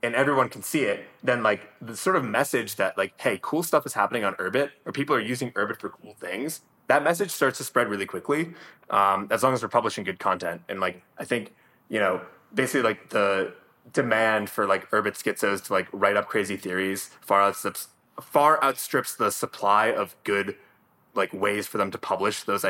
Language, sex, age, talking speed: English, male, 20-39, 205 wpm